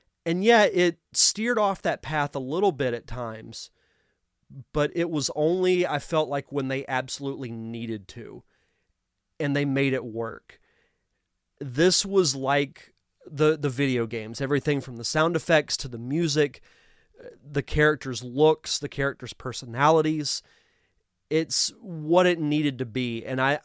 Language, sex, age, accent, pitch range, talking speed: English, male, 30-49, American, 125-160 Hz, 145 wpm